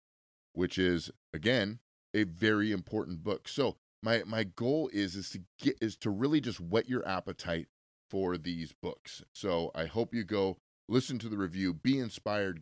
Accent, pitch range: American, 90-110 Hz